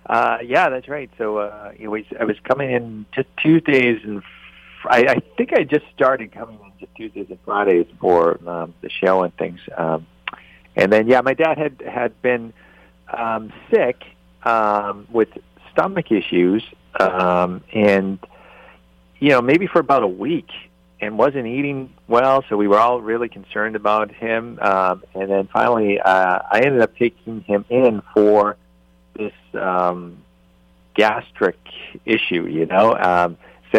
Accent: American